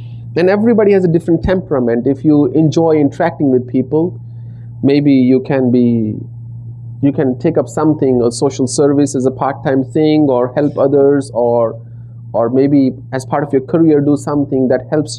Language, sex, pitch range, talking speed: English, male, 115-140 Hz, 170 wpm